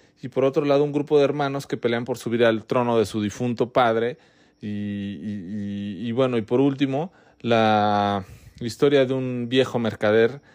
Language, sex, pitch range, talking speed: Spanish, male, 110-140 Hz, 180 wpm